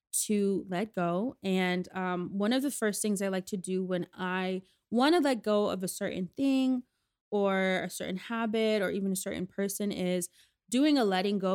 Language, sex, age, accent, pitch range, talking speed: English, female, 20-39, American, 180-215 Hz, 195 wpm